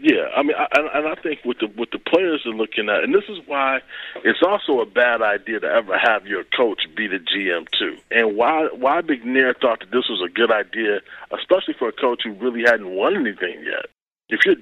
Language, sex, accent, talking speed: English, male, American, 235 wpm